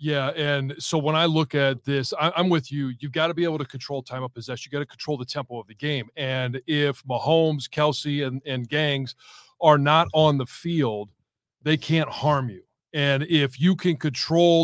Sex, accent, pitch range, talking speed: male, American, 135-160 Hz, 210 wpm